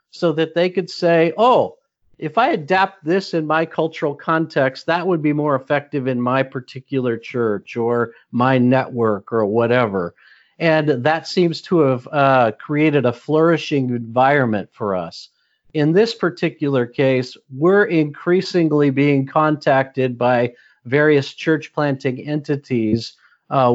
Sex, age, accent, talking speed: male, 40-59, American, 135 wpm